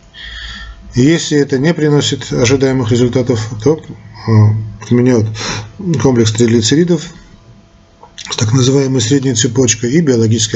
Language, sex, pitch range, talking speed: Russian, male, 110-135 Hz, 95 wpm